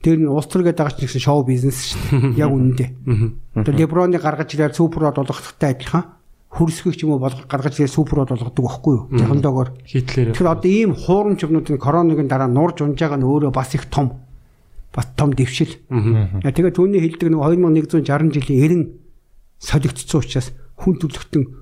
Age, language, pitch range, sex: 60-79, Korean, 130-160 Hz, male